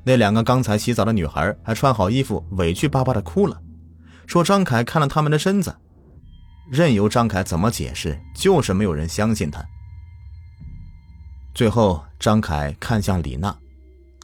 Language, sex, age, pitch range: Chinese, male, 30-49, 80-120 Hz